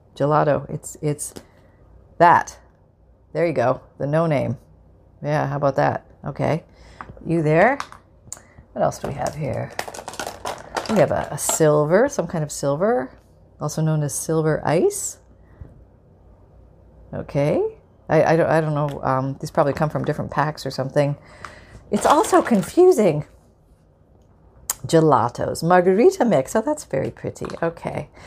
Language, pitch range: English, 130-190 Hz